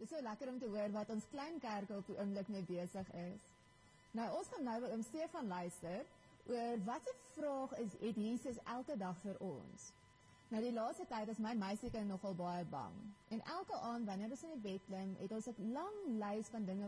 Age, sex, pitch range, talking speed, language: 30-49, female, 195-260 Hz, 215 wpm, English